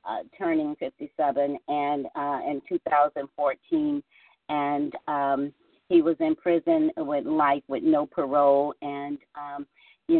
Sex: female